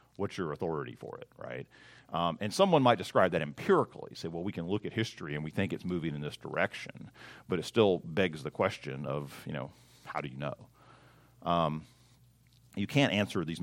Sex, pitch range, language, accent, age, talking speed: male, 75-120 Hz, English, American, 40-59, 205 wpm